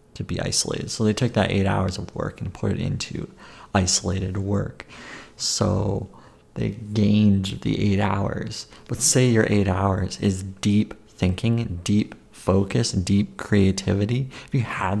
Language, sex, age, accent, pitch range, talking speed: English, male, 30-49, American, 100-115 Hz, 150 wpm